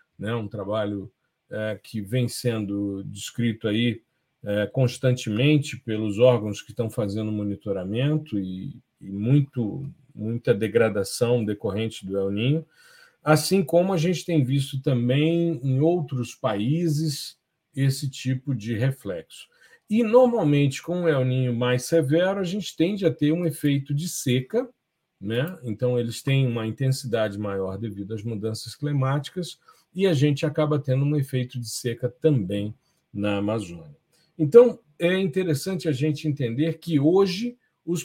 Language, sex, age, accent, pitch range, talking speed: Portuguese, male, 40-59, Brazilian, 115-155 Hz, 135 wpm